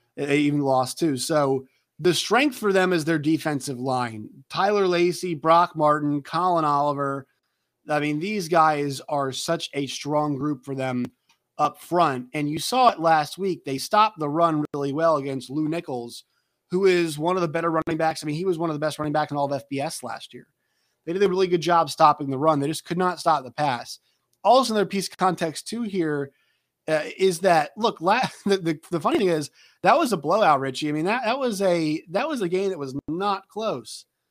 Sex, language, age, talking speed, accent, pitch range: male, English, 30-49, 220 wpm, American, 145-180 Hz